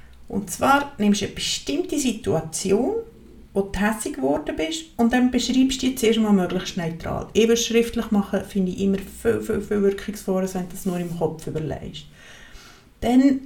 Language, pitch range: German, 185-230 Hz